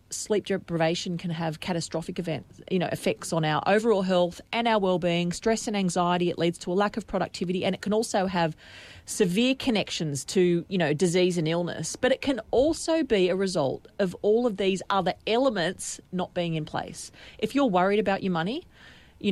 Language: English